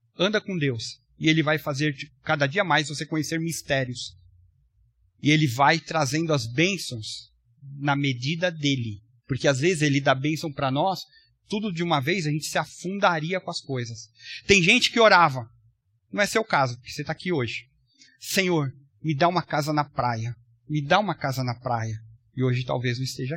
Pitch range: 125-175 Hz